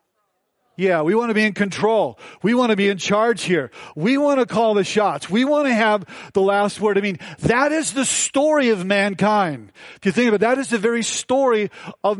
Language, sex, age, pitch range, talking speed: English, male, 40-59, 200-245 Hz, 225 wpm